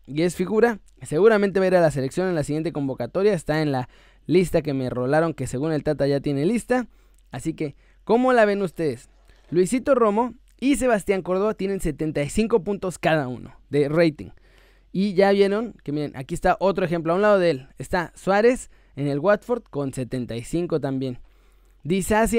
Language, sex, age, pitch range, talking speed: Spanish, male, 20-39, 140-200 Hz, 180 wpm